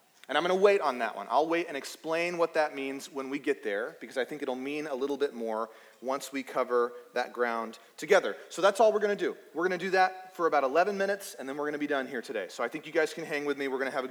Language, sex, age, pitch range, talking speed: English, male, 30-49, 140-195 Hz, 310 wpm